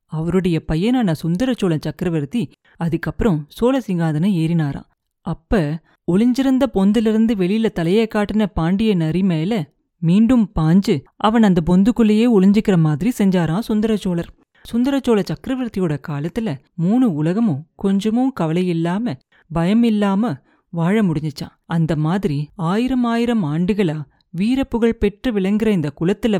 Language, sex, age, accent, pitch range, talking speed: Tamil, female, 30-49, native, 165-225 Hz, 105 wpm